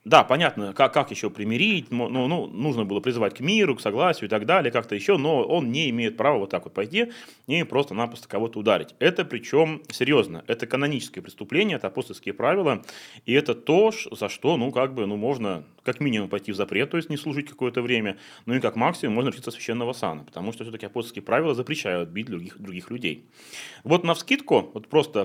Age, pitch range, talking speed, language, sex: 30-49, 105-140 Hz, 205 wpm, Russian, male